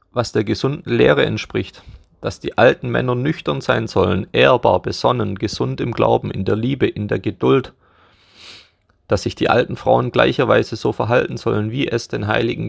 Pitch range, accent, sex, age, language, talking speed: 95-120 Hz, German, male, 30-49, German, 170 wpm